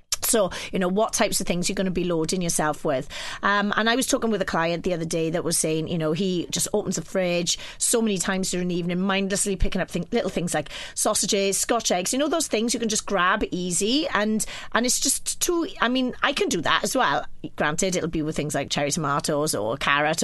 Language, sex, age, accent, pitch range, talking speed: English, female, 30-49, British, 165-205 Hz, 245 wpm